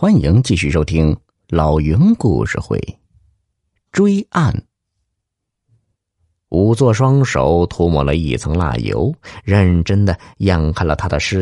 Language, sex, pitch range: Chinese, male, 85-120 Hz